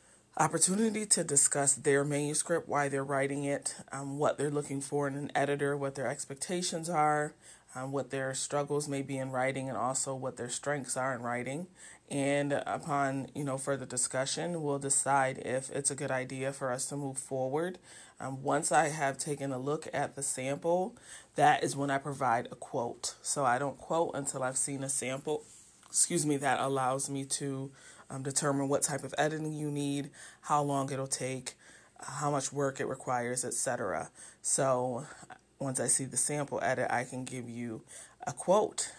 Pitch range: 130-145 Hz